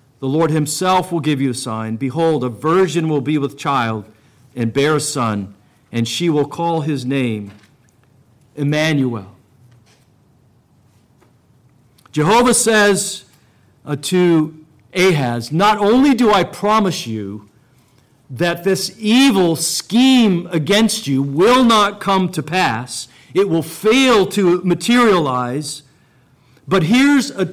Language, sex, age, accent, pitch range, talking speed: English, male, 50-69, American, 125-175 Hz, 120 wpm